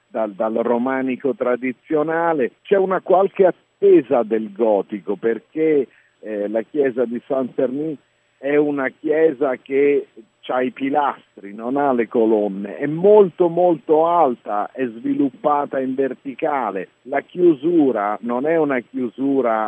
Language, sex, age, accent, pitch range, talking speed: Italian, male, 50-69, native, 110-150 Hz, 125 wpm